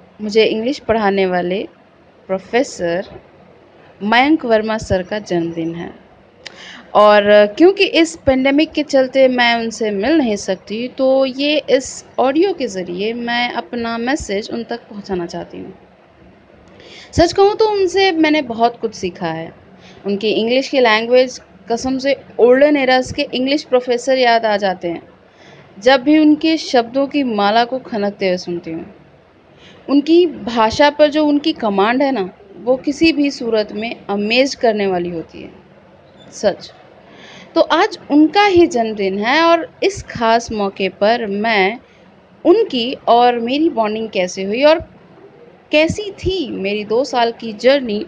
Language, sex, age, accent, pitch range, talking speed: Hindi, female, 30-49, native, 200-285 Hz, 145 wpm